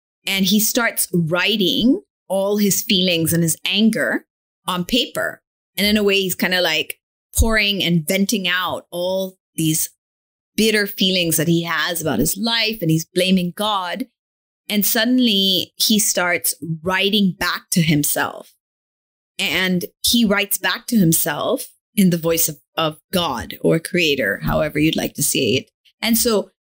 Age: 30-49